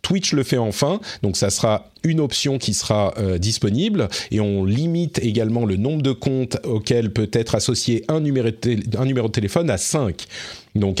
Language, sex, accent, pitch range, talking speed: French, male, French, 100-140 Hz, 195 wpm